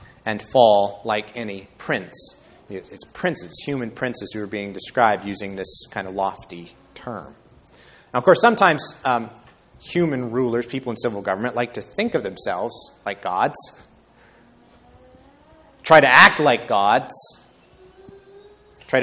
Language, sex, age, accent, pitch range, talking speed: English, male, 30-49, American, 110-150 Hz, 135 wpm